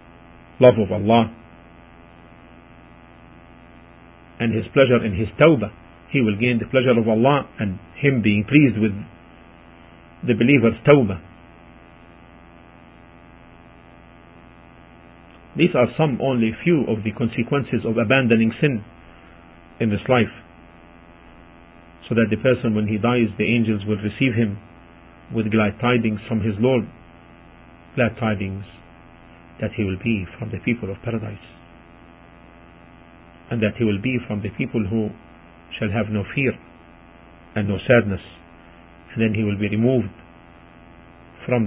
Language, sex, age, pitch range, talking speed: English, male, 50-69, 85-110 Hz, 130 wpm